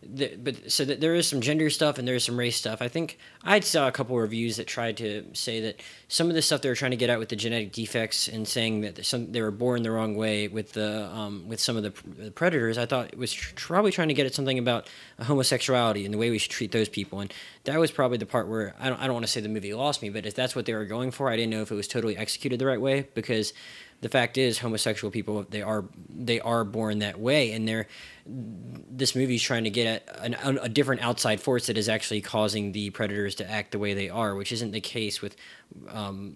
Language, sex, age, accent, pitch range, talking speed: English, male, 20-39, American, 105-125 Hz, 270 wpm